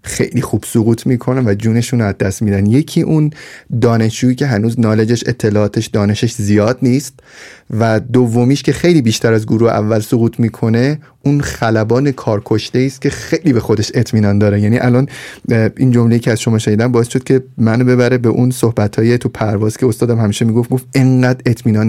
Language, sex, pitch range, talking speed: Persian, male, 110-135 Hz, 180 wpm